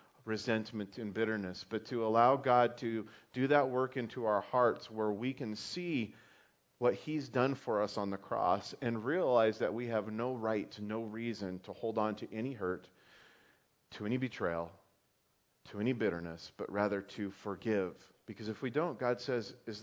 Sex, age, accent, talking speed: male, 40-59, American, 180 wpm